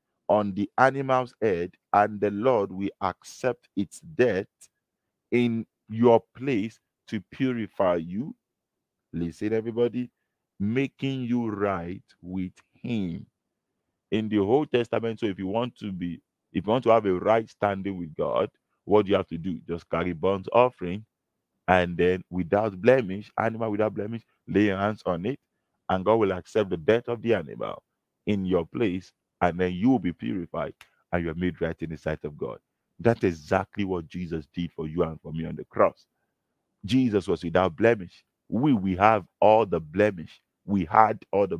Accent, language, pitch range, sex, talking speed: Nigerian, English, 90-115 Hz, male, 175 wpm